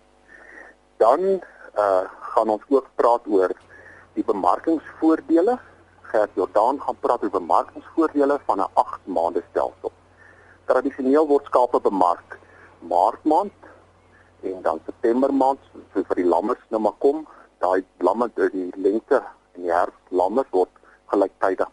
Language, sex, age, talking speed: English, male, 50-69, 130 wpm